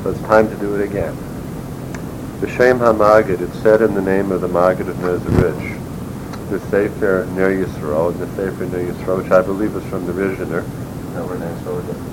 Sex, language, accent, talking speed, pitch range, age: male, English, American, 170 wpm, 95-115 Hz, 50-69